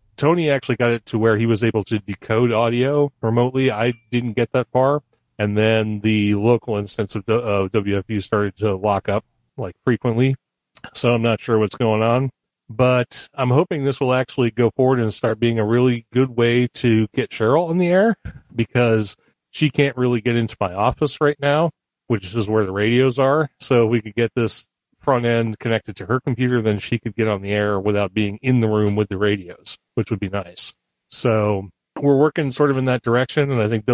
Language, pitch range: English, 110-130 Hz